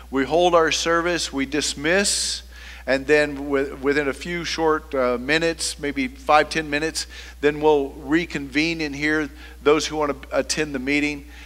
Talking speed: 160 wpm